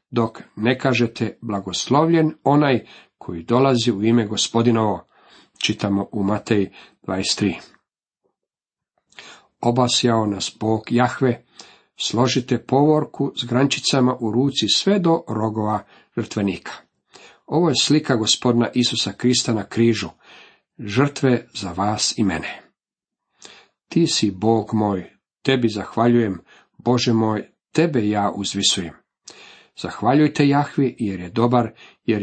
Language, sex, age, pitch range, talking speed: Croatian, male, 50-69, 110-130 Hz, 110 wpm